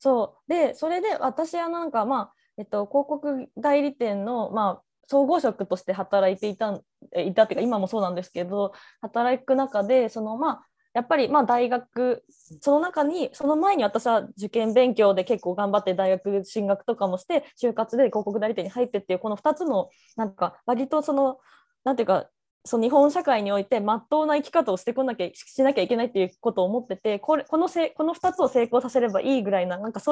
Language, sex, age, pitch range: Japanese, female, 20-39, 205-290 Hz